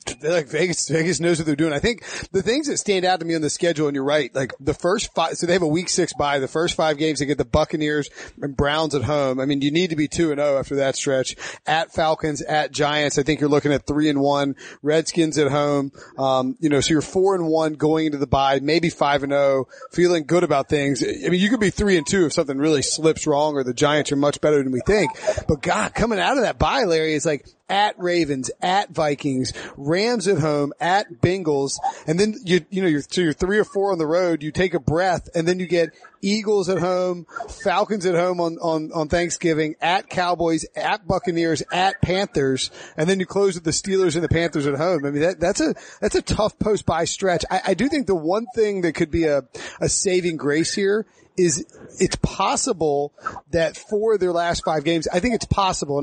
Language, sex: English, male